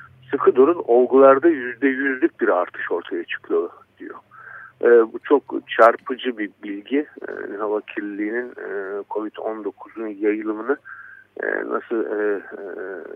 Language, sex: Turkish, male